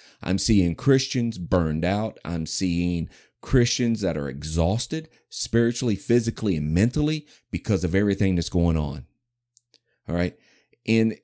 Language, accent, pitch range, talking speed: English, American, 90-120 Hz, 130 wpm